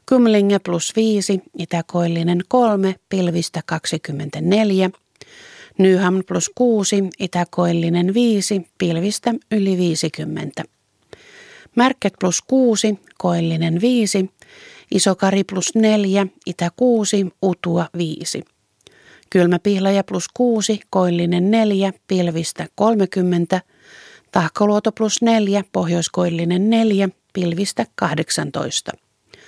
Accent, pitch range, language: native, 175-215 Hz, Finnish